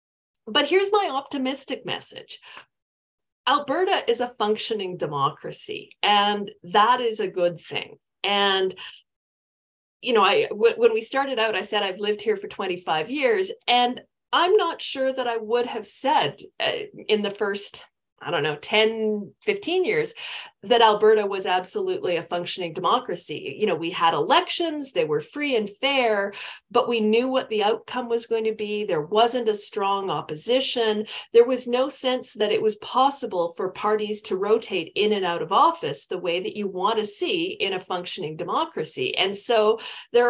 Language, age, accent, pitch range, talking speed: English, 40-59, American, 200-320 Hz, 170 wpm